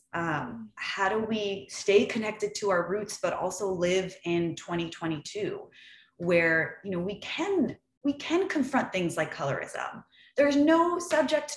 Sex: female